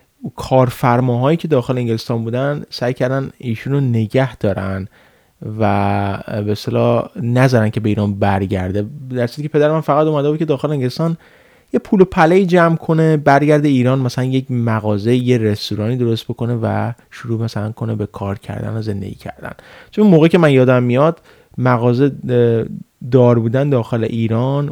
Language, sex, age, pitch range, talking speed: Persian, male, 30-49, 110-145 Hz, 155 wpm